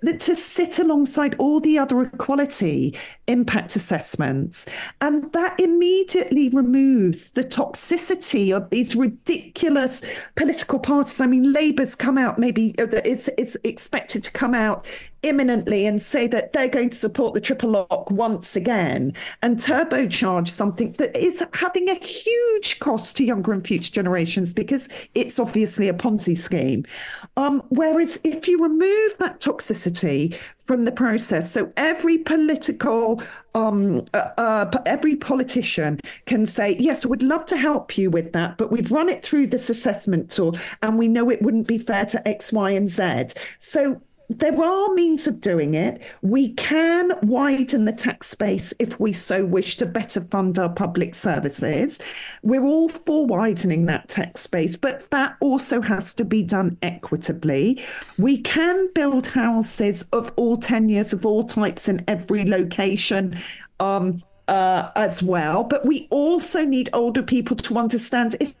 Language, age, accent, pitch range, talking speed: English, 40-59, British, 205-290 Hz, 155 wpm